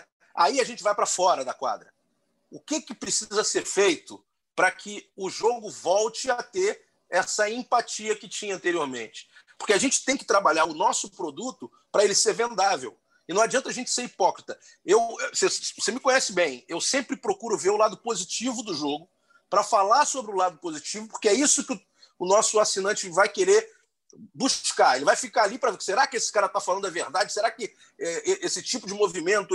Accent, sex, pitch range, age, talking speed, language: Brazilian, male, 205-310 Hz, 40-59, 195 wpm, Portuguese